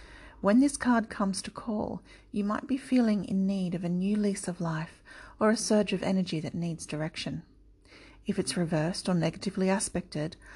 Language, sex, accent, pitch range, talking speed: English, female, Australian, 175-210 Hz, 180 wpm